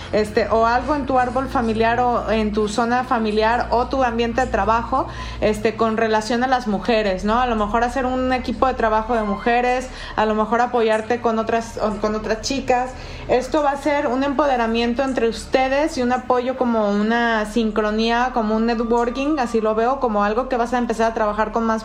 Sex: female